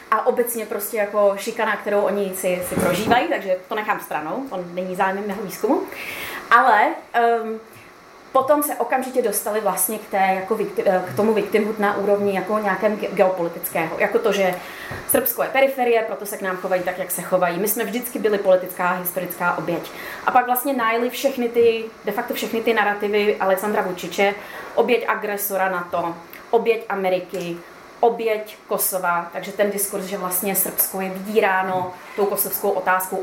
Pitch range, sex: 185-225 Hz, female